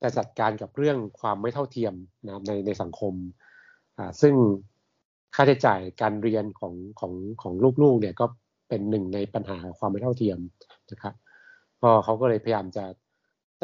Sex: male